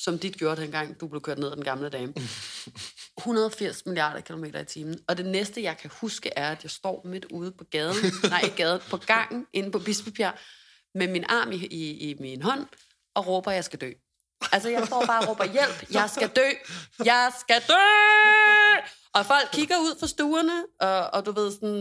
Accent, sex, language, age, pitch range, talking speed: native, female, Danish, 30-49, 160-220 Hz, 205 wpm